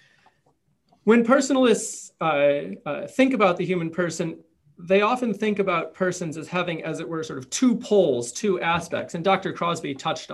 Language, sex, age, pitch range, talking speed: English, male, 30-49, 140-190 Hz, 170 wpm